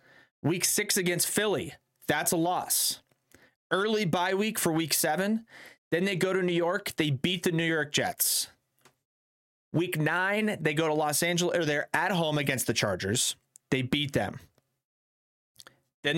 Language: English